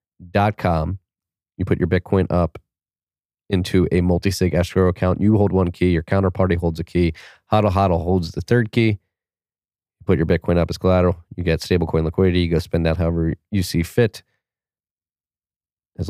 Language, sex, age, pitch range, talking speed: English, male, 30-49, 85-100 Hz, 170 wpm